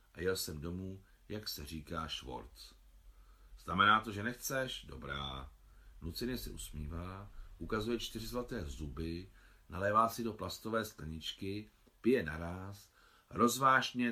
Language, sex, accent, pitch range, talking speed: Czech, male, native, 80-115 Hz, 120 wpm